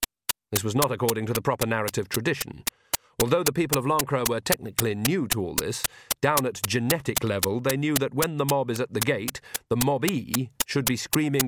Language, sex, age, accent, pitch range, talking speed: English, male, 40-59, British, 110-140 Hz, 210 wpm